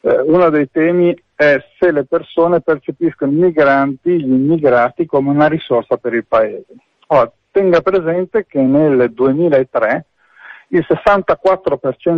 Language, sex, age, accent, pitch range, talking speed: Italian, male, 50-69, native, 135-175 Hz, 120 wpm